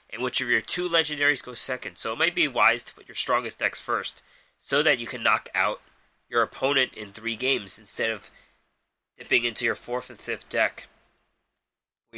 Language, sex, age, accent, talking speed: English, male, 20-39, American, 195 wpm